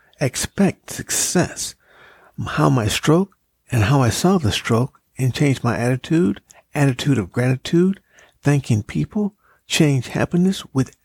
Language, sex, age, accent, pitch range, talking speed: English, male, 60-79, American, 120-155 Hz, 125 wpm